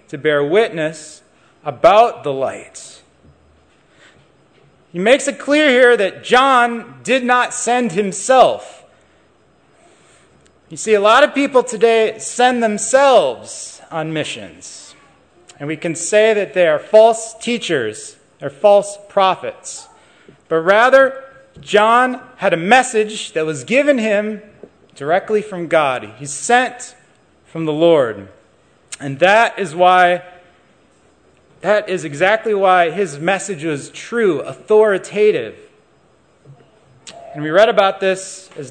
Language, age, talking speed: English, 30-49, 120 wpm